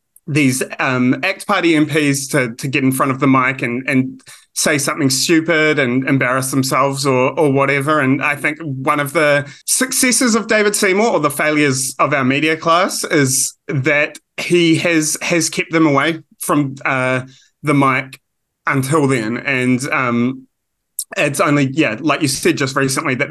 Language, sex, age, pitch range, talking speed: English, male, 20-39, 125-155 Hz, 170 wpm